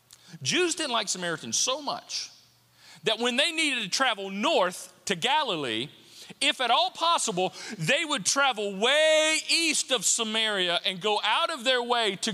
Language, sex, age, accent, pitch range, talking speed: English, male, 40-59, American, 165-255 Hz, 160 wpm